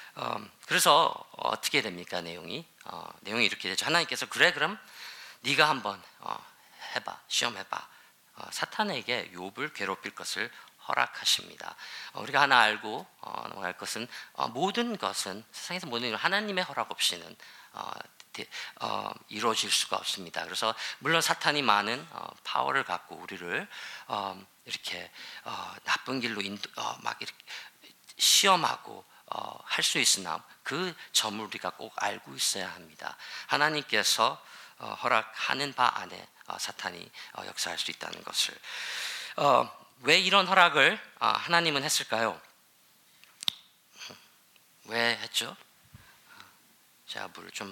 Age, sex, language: 40-59, male, Korean